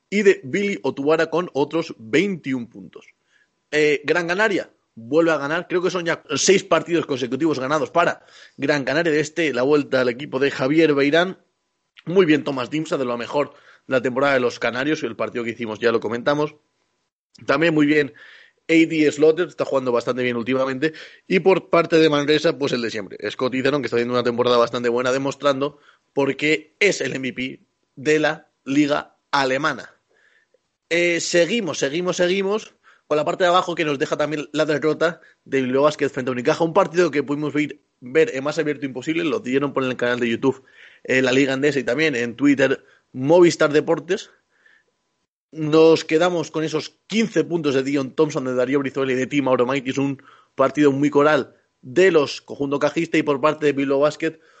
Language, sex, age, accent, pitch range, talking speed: Spanish, male, 30-49, Spanish, 135-165 Hz, 190 wpm